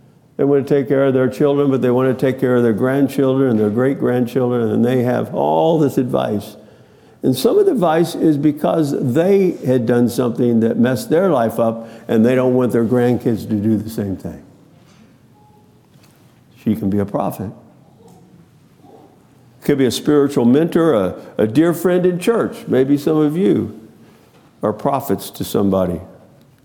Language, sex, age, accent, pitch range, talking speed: English, male, 50-69, American, 115-150 Hz, 175 wpm